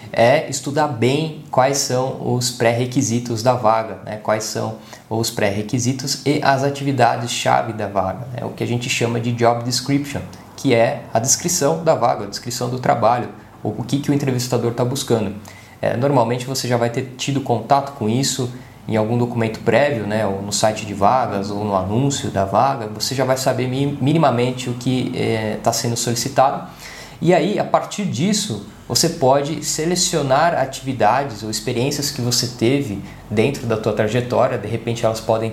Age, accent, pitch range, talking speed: 20-39, Brazilian, 110-140 Hz, 175 wpm